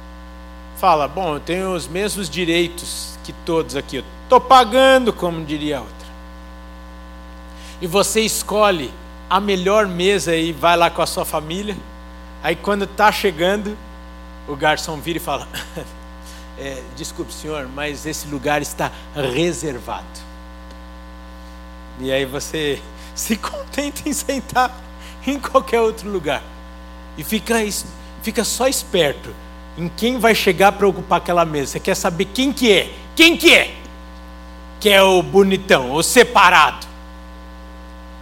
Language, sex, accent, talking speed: Portuguese, male, Brazilian, 135 wpm